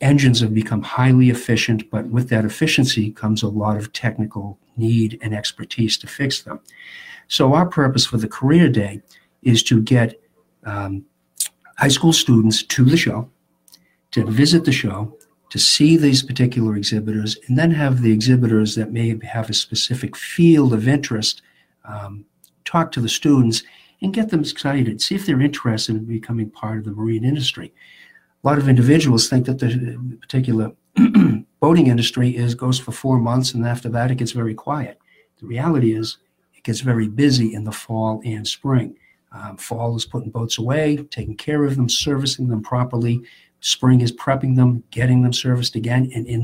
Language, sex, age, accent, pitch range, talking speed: English, male, 50-69, American, 110-135 Hz, 175 wpm